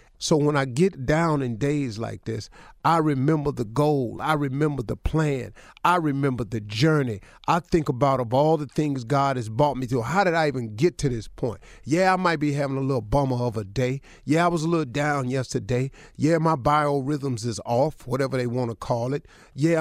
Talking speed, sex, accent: 215 wpm, male, American